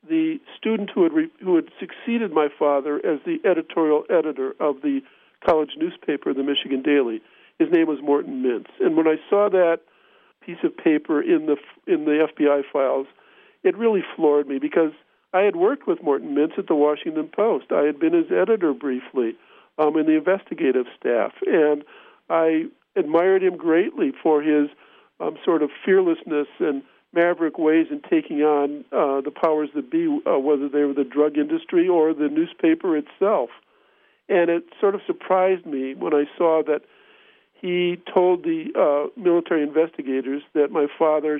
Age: 50-69